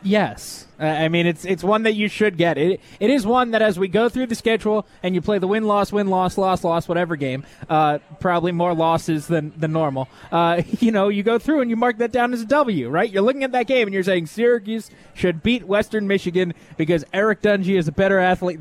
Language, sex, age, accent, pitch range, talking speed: English, male, 20-39, American, 170-215 Hz, 230 wpm